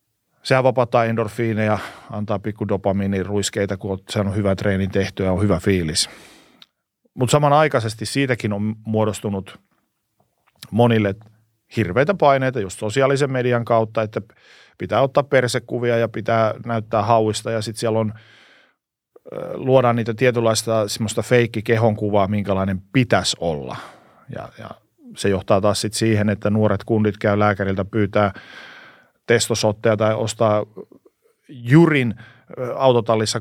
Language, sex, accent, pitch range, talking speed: Finnish, male, native, 105-125 Hz, 120 wpm